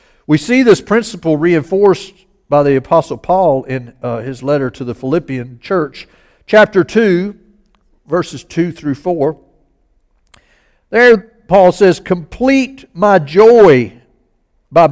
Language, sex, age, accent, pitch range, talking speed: English, male, 60-79, American, 135-210 Hz, 120 wpm